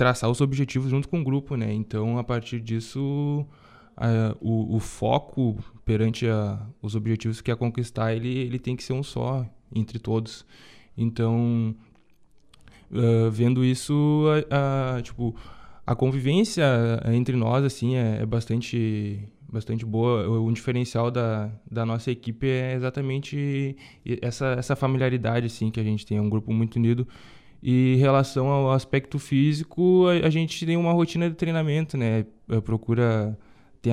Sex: male